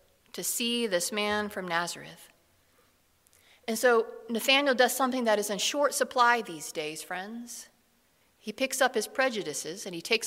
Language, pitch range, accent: English, 200-255 Hz, American